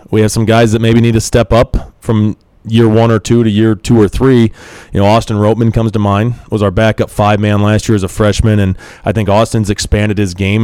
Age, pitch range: 30-49, 100-115 Hz